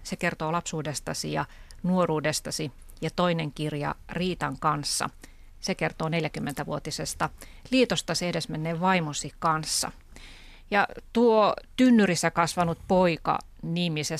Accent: native